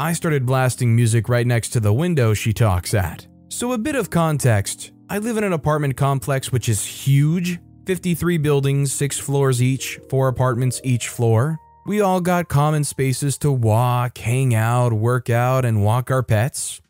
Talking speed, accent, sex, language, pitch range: 180 wpm, American, male, English, 115-145 Hz